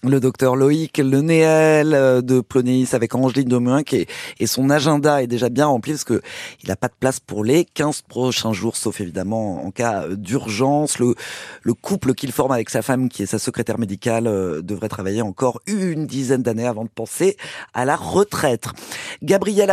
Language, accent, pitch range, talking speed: French, French, 120-155 Hz, 180 wpm